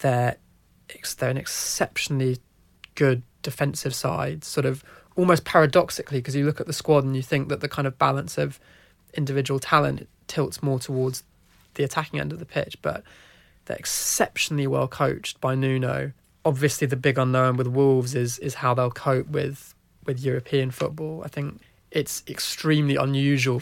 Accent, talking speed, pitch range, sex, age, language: British, 165 wpm, 130-150 Hz, male, 20-39, English